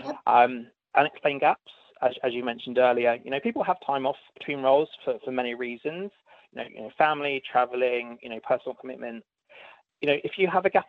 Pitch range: 125-155 Hz